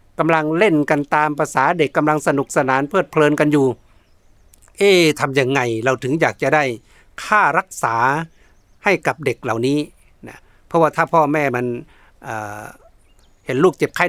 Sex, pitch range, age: male, 120-170 Hz, 60-79